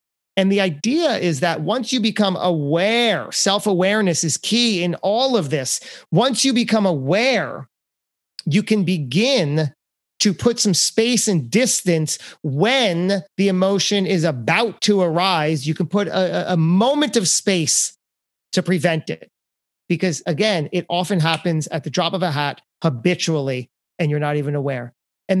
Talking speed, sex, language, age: 155 wpm, male, English, 30-49